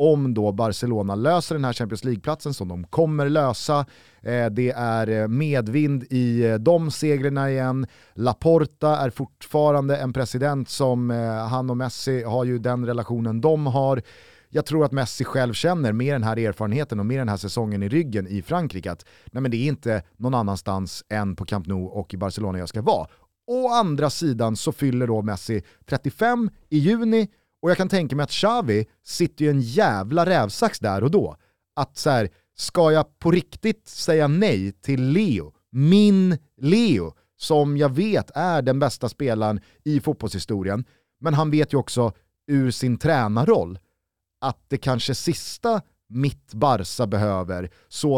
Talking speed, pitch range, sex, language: 170 wpm, 110-145 Hz, male, Swedish